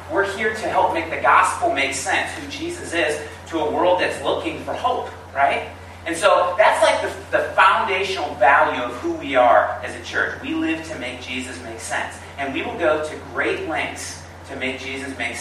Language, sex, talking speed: English, male, 205 wpm